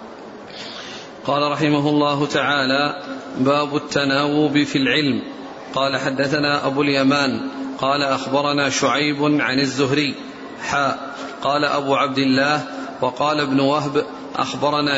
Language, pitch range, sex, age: Arabic, 140-150 Hz, male, 40-59